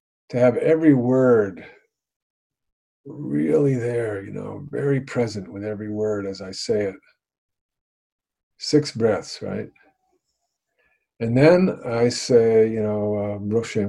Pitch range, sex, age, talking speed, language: 105-130 Hz, male, 50-69, 115 wpm, English